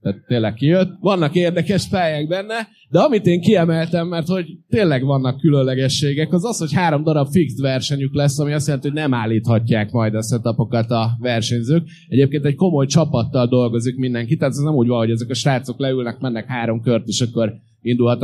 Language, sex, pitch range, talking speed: Hungarian, male, 120-155 Hz, 190 wpm